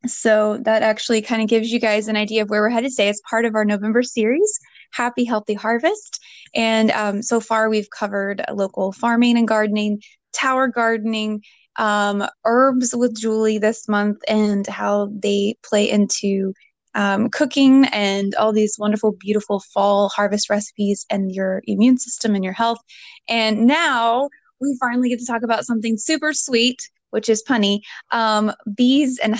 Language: English